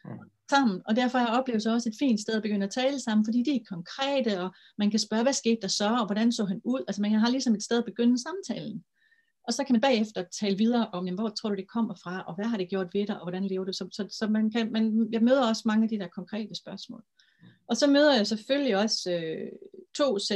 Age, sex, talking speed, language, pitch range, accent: 30-49, female, 265 wpm, English, 185-230 Hz, Danish